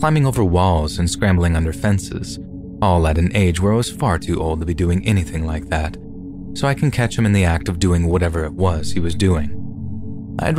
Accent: American